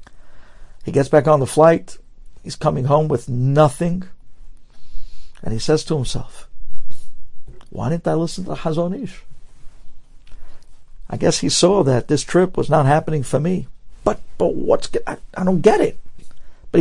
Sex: male